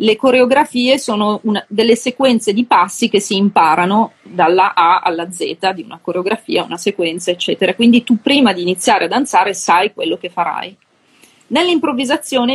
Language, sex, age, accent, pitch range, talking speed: Italian, female, 30-49, native, 195-255 Hz, 155 wpm